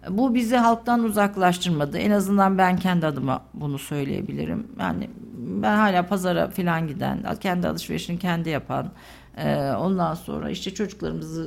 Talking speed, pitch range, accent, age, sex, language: 130 wpm, 135-200 Hz, native, 50-69, female, Turkish